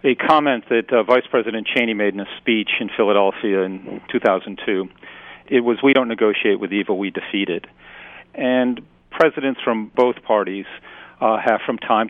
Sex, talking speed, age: male, 170 wpm, 40-59